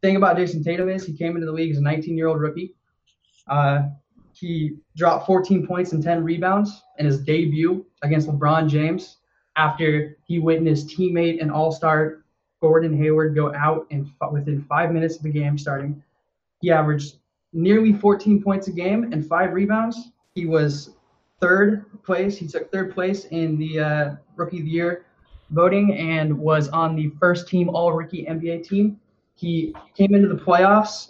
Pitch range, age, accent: 155-180 Hz, 20-39, American